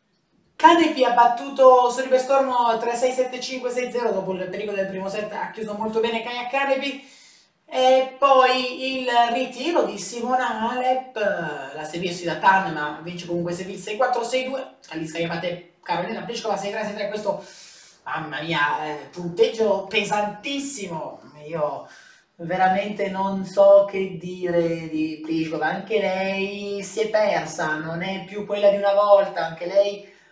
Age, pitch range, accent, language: 30-49, 170-240 Hz, native, Italian